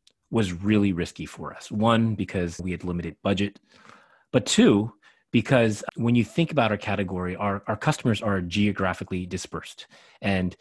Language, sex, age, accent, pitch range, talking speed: English, male, 30-49, American, 90-115 Hz, 155 wpm